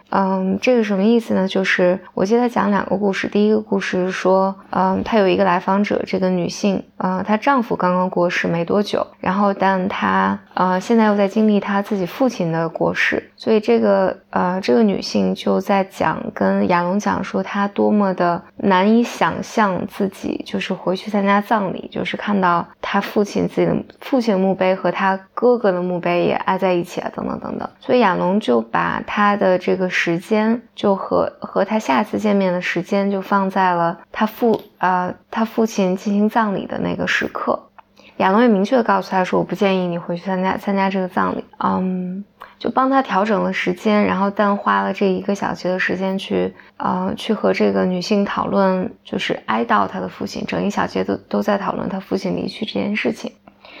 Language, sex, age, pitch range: English, female, 20-39, 180-210 Hz